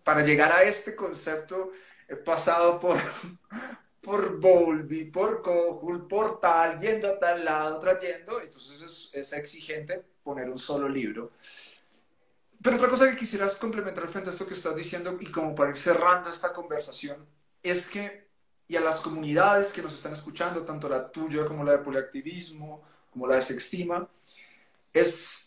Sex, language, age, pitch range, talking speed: male, Spanish, 30-49, 155-195 Hz, 160 wpm